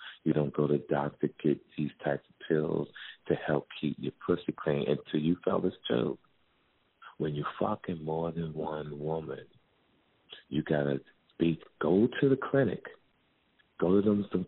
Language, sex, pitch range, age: English, male, 75-85 Hz, 40-59